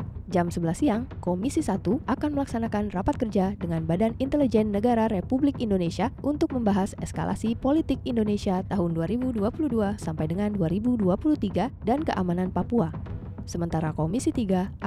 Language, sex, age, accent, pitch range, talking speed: Indonesian, female, 20-39, native, 175-250 Hz, 125 wpm